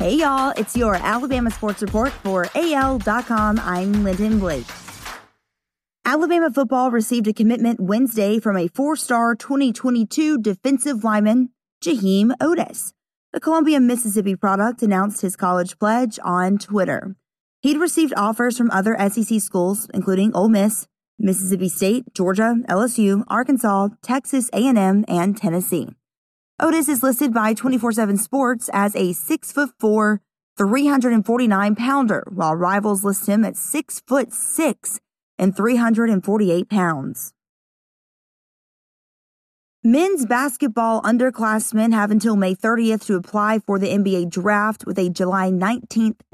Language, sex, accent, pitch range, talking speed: English, female, American, 195-245 Hz, 115 wpm